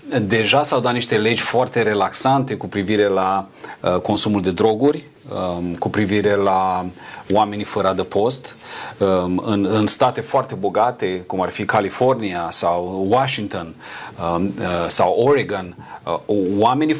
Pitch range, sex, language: 100-125 Hz, male, Romanian